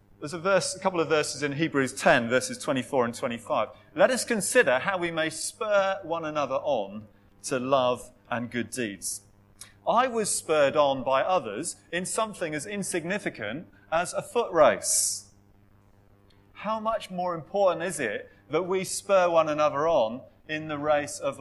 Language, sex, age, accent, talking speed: English, male, 30-49, British, 165 wpm